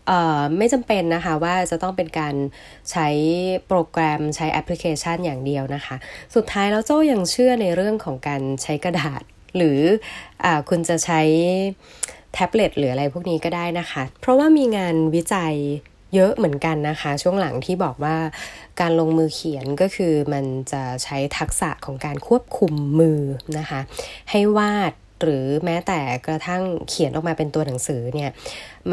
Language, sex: Thai, female